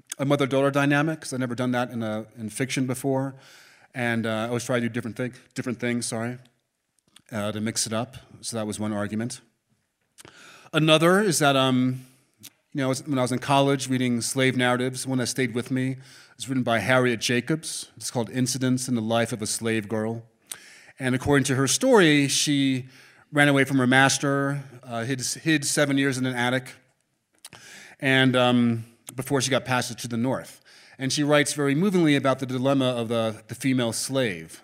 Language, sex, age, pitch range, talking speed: English, male, 30-49, 115-135 Hz, 190 wpm